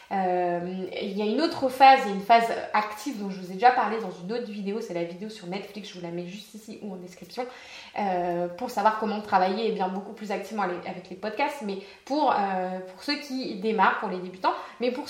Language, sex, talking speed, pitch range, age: French, female, 235 wpm, 190-240 Hz, 20-39